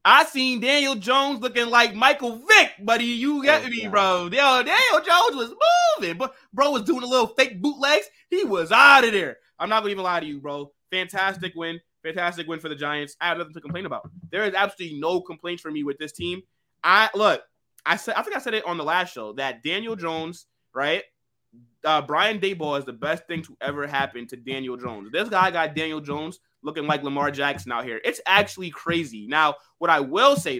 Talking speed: 220 wpm